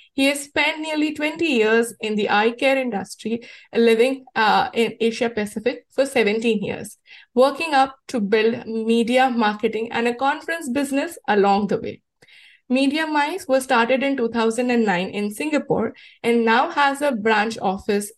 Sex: female